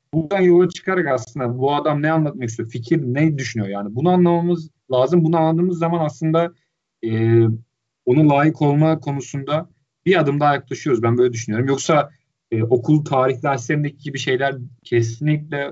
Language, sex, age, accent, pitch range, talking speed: Turkish, male, 40-59, native, 120-160 Hz, 155 wpm